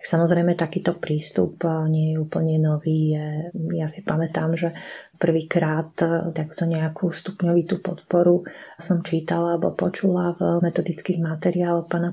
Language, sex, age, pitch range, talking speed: Slovak, female, 30-49, 160-185 Hz, 120 wpm